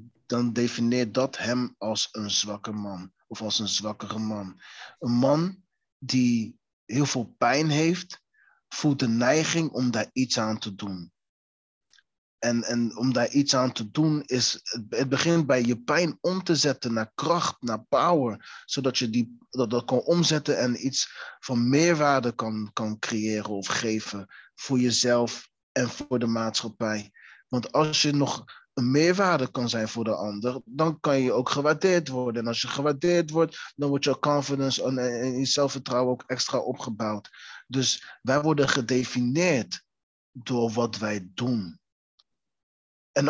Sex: male